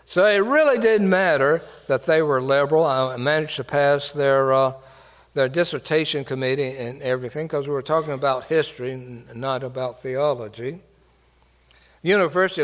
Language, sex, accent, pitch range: English, male, American, 125-155 Hz